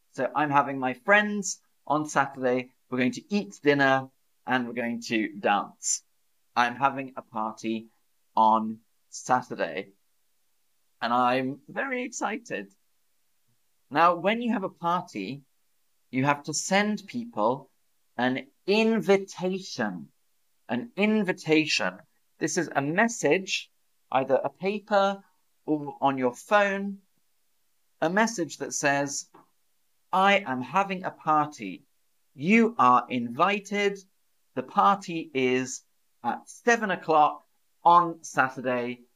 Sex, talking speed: male, 110 wpm